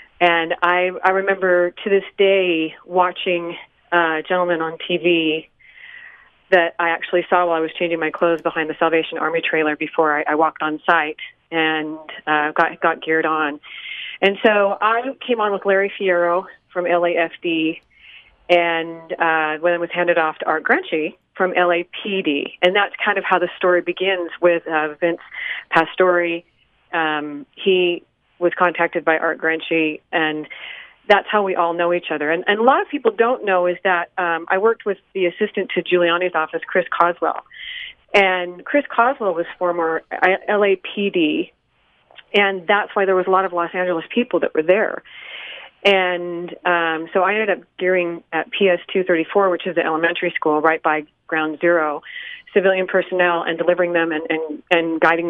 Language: English